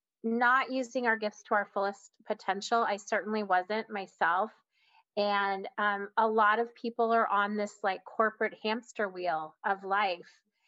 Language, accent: English, American